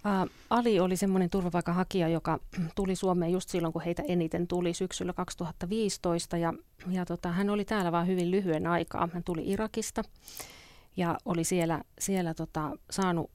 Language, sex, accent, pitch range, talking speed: Finnish, female, native, 165-190 Hz, 155 wpm